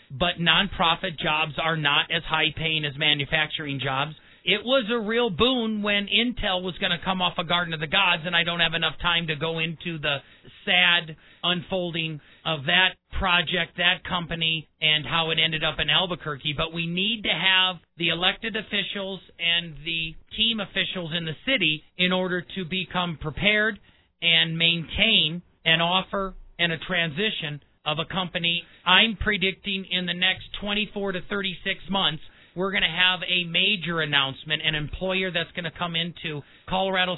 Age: 40-59